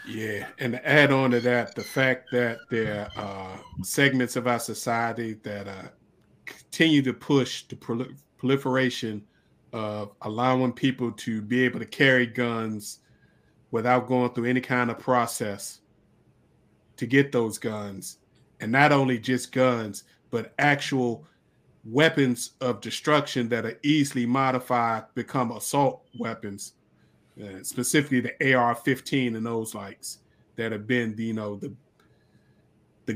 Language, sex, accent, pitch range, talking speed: English, male, American, 115-130 Hz, 135 wpm